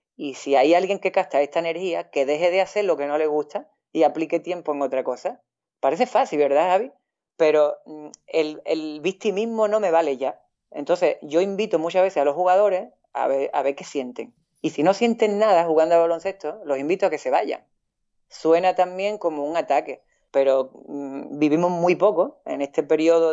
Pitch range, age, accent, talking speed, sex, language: 145-185 Hz, 30-49, Spanish, 200 wpm, female, Spanish